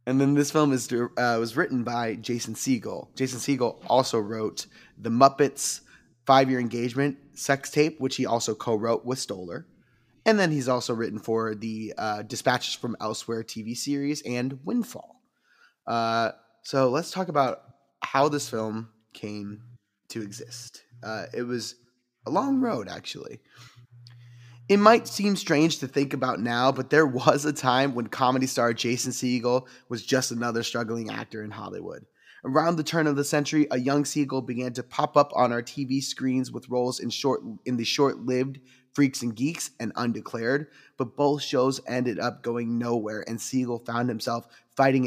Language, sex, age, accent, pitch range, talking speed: English, male, 20-39, American, 115-140 Hz, 165 wpm